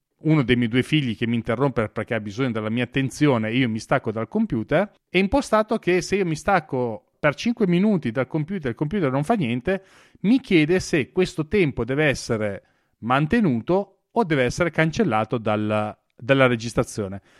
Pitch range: 125-185 Hz